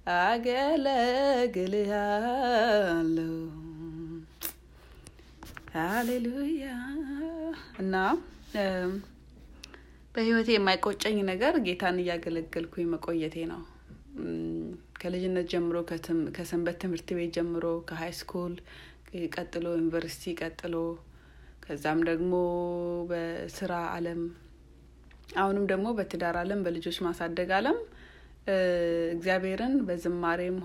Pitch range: 170-210 Hz